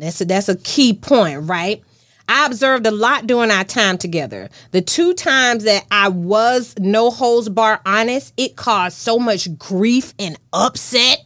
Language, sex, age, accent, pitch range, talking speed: English, female, 30-49, American, 190-255 Hz, 170 wpm